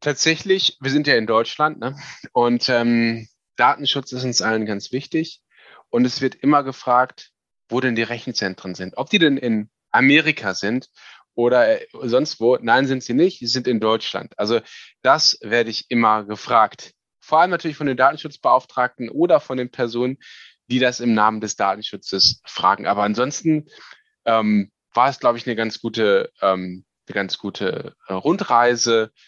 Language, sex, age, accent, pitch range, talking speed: German, male, 10-29, German, 110-130 Hz, 165 wpm